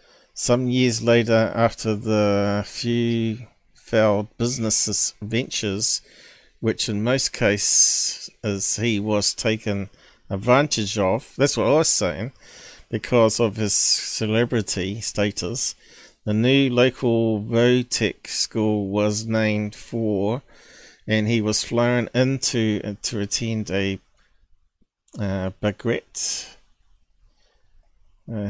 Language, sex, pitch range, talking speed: English, male, 105-120 Hz, 105 wpm